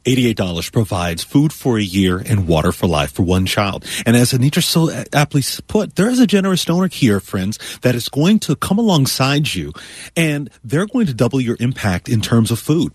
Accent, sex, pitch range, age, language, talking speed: American, male, 110-150 Hz, 40-59, English, 205 wpm